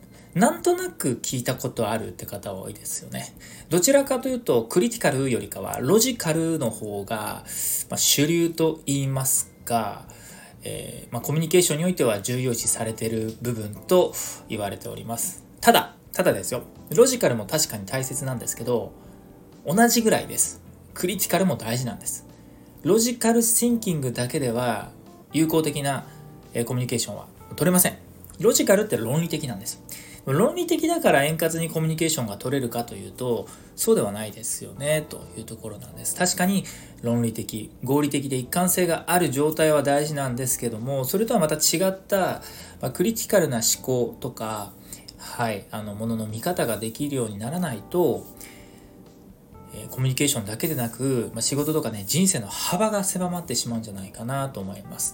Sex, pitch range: male, 115-170 Hz